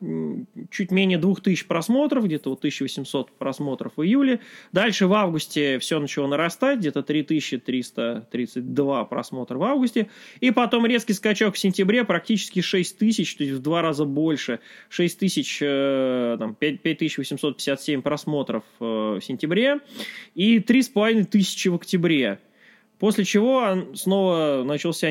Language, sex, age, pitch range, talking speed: Russian, male, 20-39, 135-210 Hz, 110 wpm